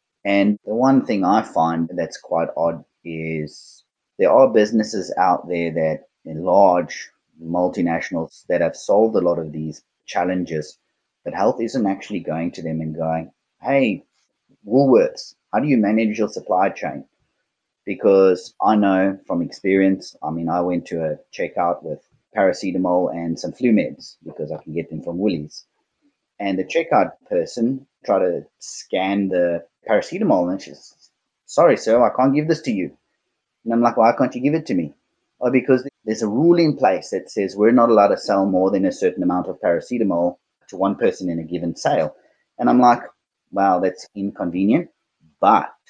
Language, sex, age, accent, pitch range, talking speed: English, male, 30-49, Australian, 85-115 Hz, 175 wpm